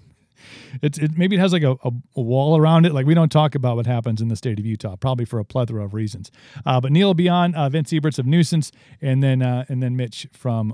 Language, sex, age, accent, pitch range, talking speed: English, male, 40-59, American, 120-150 Hz, 270 wpm